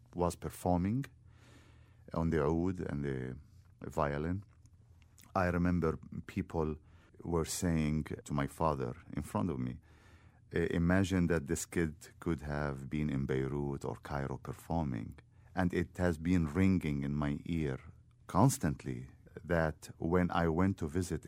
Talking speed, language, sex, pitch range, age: 135 wpm, English, male, 75-95 Hz, 50-69